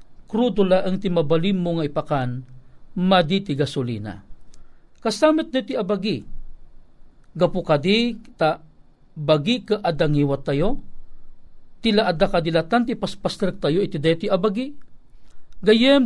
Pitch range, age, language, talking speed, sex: 155-215 Hz, 50-69, Filipino, 100 wpm, male